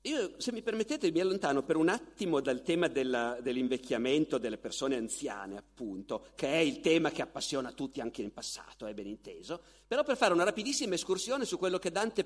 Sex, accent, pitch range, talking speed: male, native, 130-215 Hz, 195 wpm